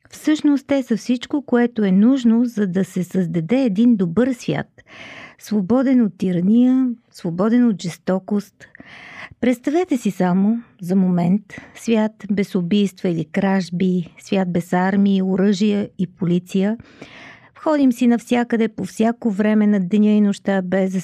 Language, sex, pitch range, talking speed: Bulgarian, female, 185-235 Hz, 135 wpm